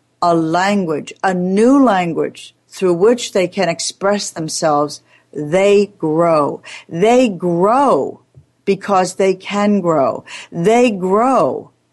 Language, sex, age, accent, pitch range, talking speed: English, female, 60-79, American, 165-215 Hz, 105 wpm